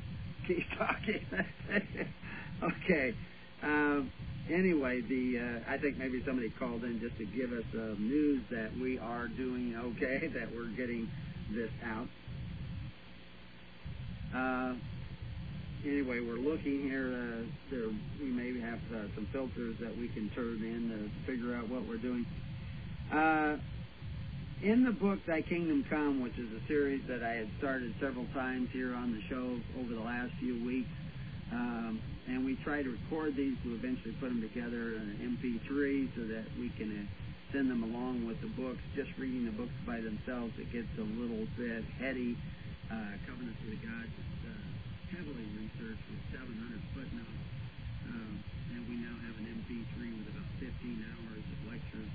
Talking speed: 165 wpm